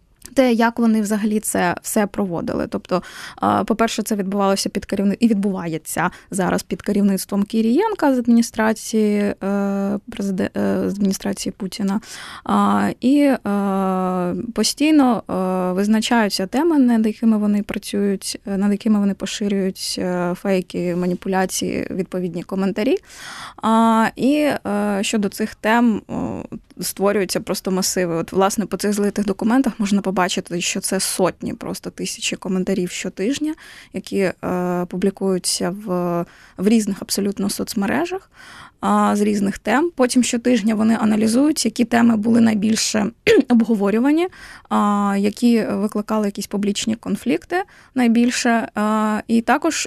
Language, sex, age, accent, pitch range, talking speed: Ukrainian, female, 20-39, native, 195-235 Hz, 110 wpm